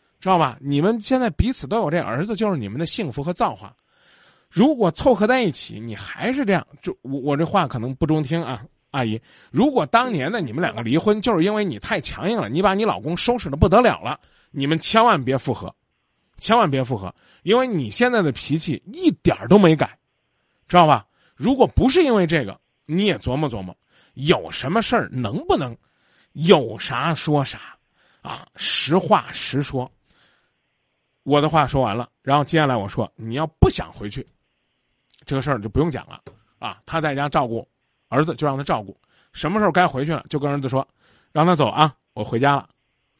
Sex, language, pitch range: male, Chinese, 130-180 Hz